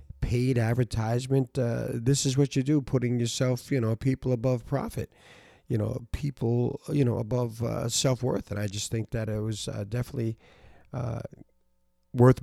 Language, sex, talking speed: English, male, 165 wpm